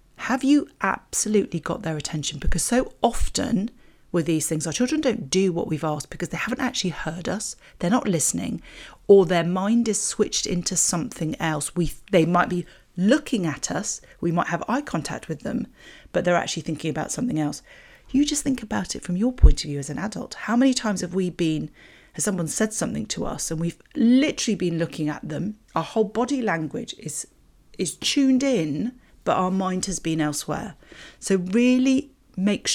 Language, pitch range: English, 165-225 Hz